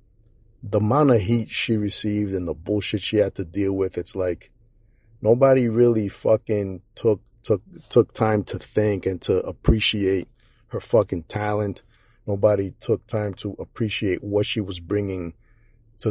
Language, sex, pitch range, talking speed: English, male, 100-115 Hz, 155 wpm